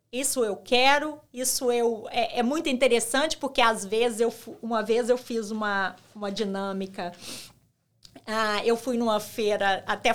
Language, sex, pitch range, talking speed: English, female, 225-295 Hz, 155 wpm